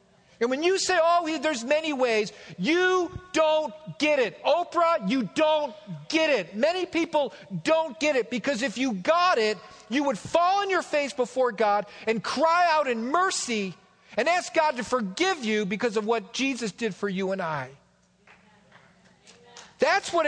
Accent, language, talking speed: American, English, 170 wpm